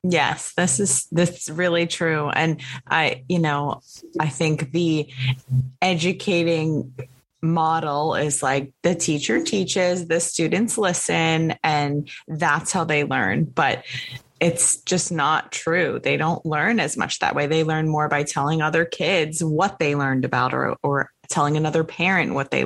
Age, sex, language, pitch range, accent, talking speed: 20-39, female, English, 145-170 Hz, American, 155 wpm